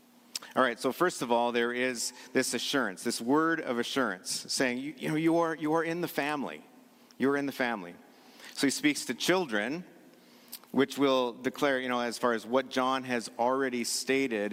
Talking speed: 200 wpm